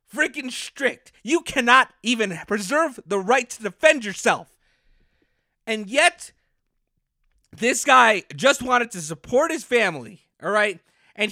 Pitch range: 210-275 Hz